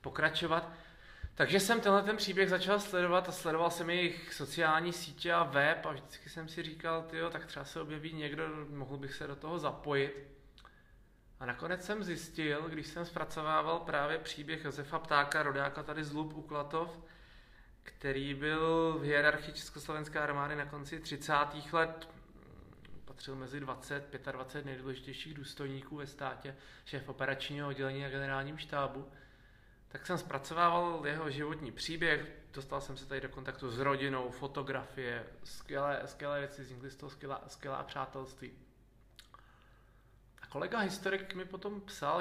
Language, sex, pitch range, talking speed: Czech, male, 140-165 Hz, 145 wpm